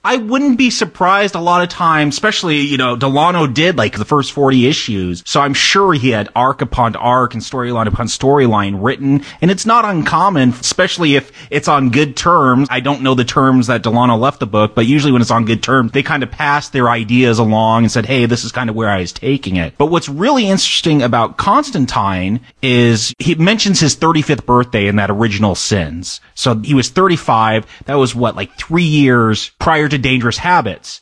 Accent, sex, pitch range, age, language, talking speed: American, male, 125-170 Hz, 30-49, English, 205 wpm